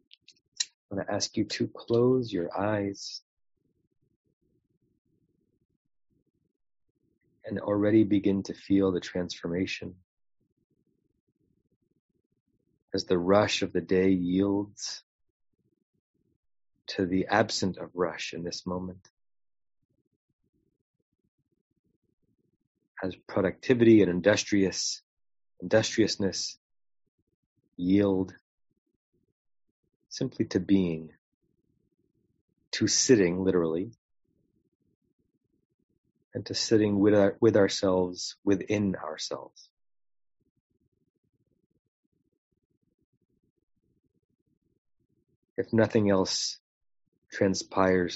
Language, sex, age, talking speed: English, male, 30-49, 70 wpm